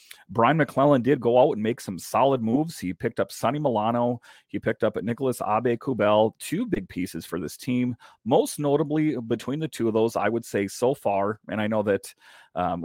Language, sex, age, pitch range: English, male, 40-59, 100-125 Hz